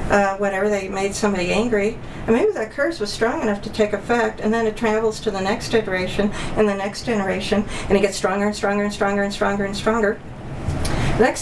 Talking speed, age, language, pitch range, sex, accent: 215 wpm, 50-69, English, 190-220 Hz, female, American